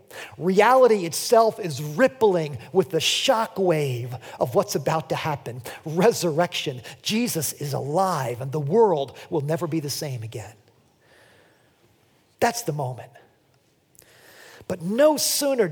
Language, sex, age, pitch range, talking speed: English, male, 40-59, 150-235 Hz, 120 wpm